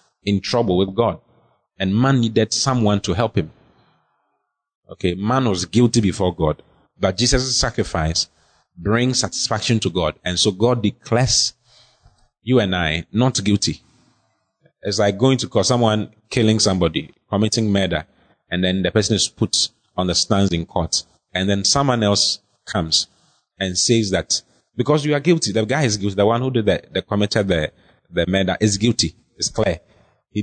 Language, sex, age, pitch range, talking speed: English, male, 30-49, 95-115 Hz, 170 wpm